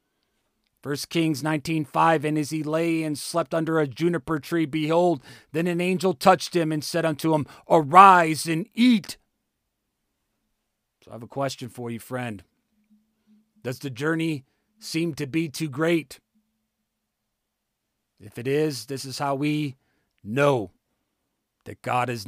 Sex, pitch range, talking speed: male, 130-165 Hz, 145 wpm